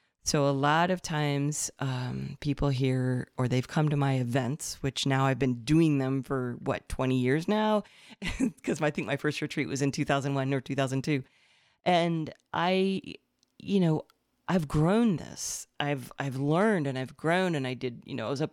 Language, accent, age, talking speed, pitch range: English, American, 40-59, 185 wpm, 135-170 Hz